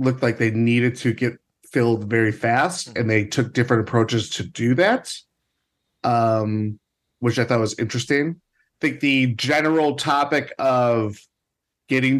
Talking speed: 150 wpm